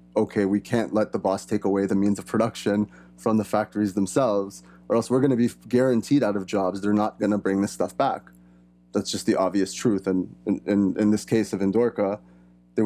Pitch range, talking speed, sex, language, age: 95-110 Hz, 220 wpm, male, English, 20-39